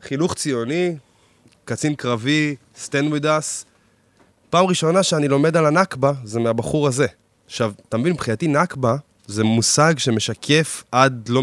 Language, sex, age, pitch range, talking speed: Hebrew, male, 20-39, 120-165 Hz, 130 wpm